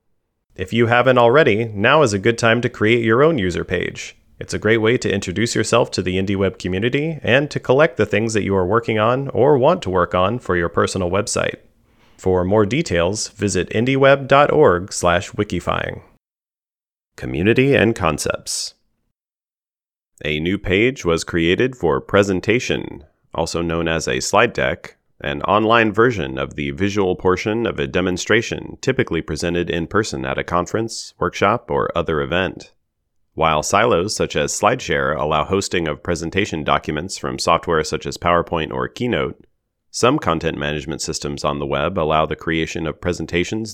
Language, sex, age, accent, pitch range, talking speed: English, male, 30-49, American, 80-115 Hz, 160 wpm